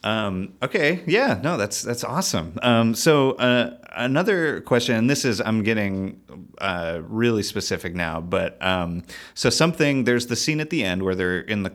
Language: English